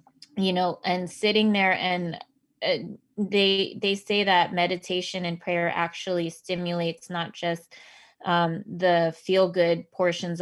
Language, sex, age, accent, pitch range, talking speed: English, female, 20-39, American, 165-185 Hz, 130 wpm